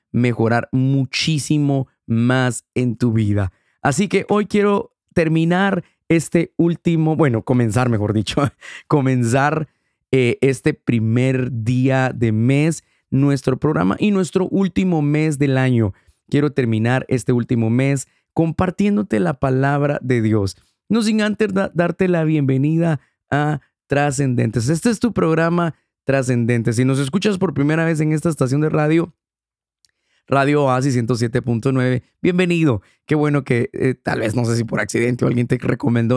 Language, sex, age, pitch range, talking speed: Spanish, male, 30-49, 120-150 Hz, 140 wpm